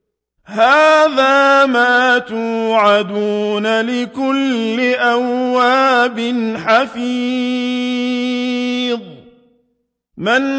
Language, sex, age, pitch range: Arabic, male, 50-69, 225-250 Hz